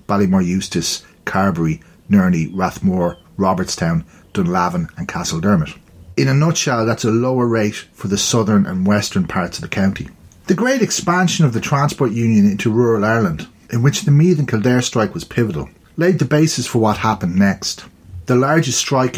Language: English